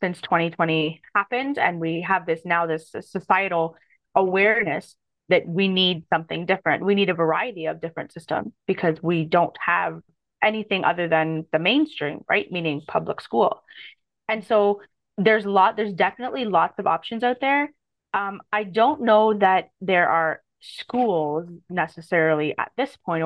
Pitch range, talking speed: 165-210 Hz, 155 wpm